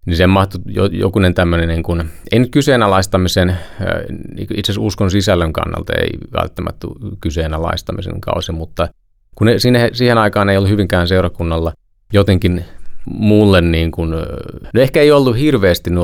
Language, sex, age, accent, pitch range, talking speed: Finnish, male, 30-49, native, 85-100 Hz, 130 wpm